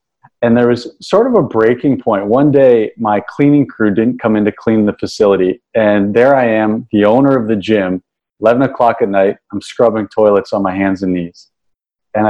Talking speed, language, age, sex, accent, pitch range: 205 wpm, English, 40-59, male, American, 105-135 Hz